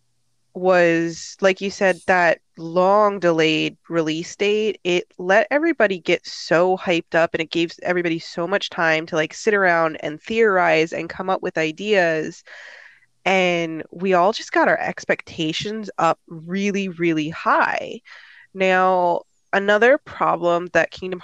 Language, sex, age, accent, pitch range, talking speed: English, female, 20-39, American, 160-185 Hz, 140 wpm